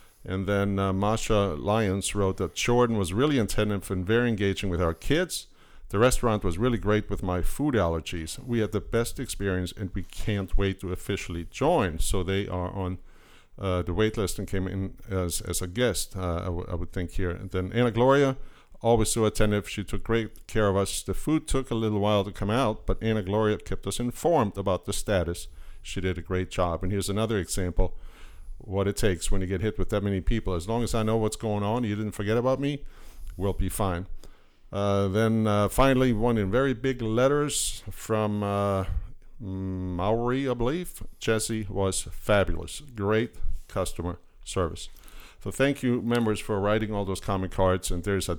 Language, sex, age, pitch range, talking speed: English, male, 50-69, 90-110 Hz, 195 wpm